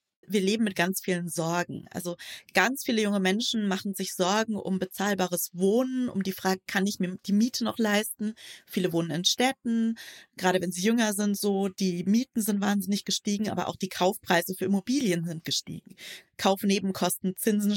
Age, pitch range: 20-39, 180-220 Hz